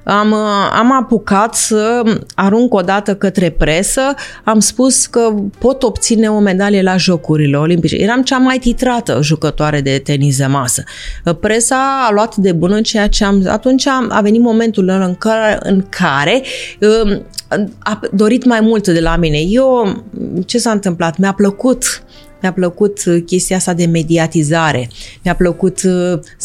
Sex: female